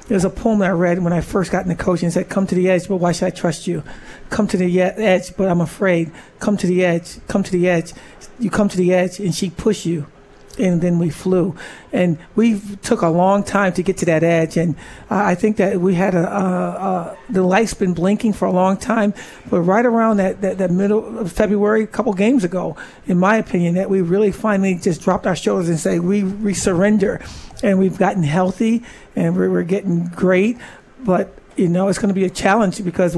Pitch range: 180-205 Hz